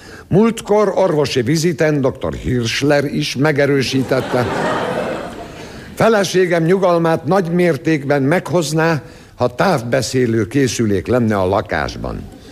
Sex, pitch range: male, 115-175 Hz